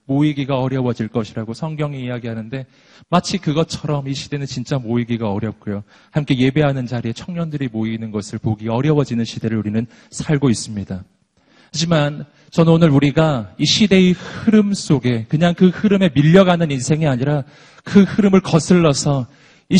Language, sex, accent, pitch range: Korean, male, native, 140-200 Hz